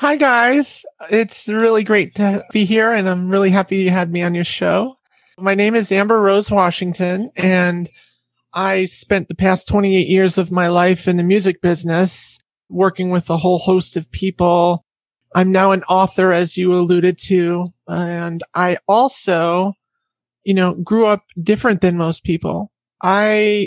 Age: 30-49